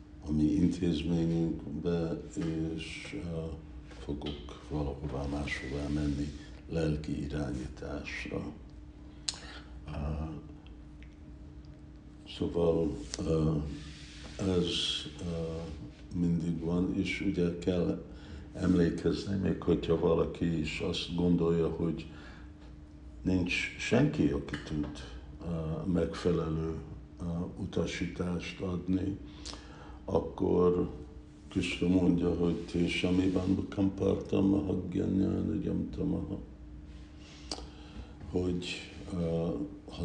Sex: male